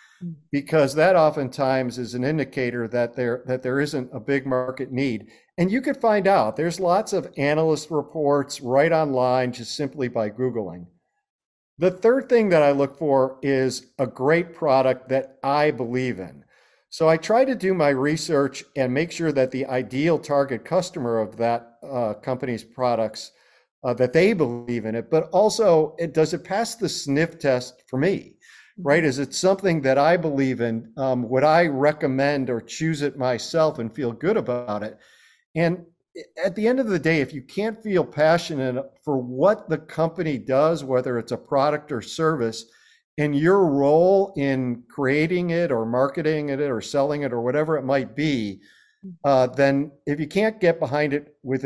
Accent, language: American, English